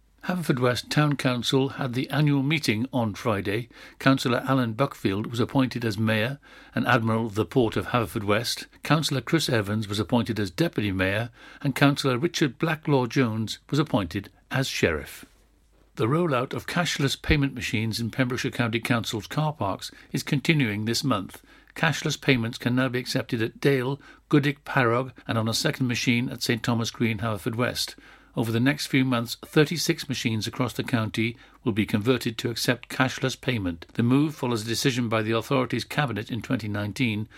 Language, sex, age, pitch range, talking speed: English, male, 60-79, 115-140 Hz, 170 wpm